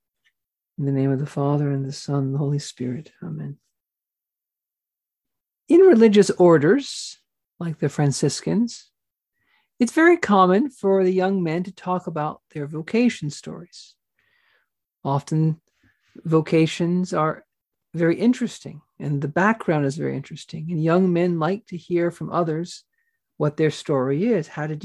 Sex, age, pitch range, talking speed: male, 50-69, 155-210 Hz, 140 wpm